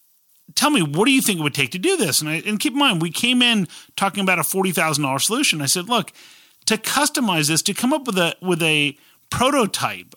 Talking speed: 240 wpm